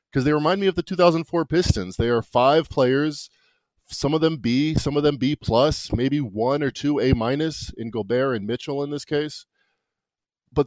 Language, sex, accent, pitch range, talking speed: English, male, American, 105-145 Hz, 185 wpm